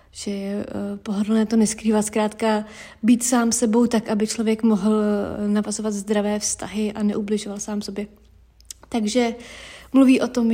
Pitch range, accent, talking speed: 210-240 Hz, native, 135 wpm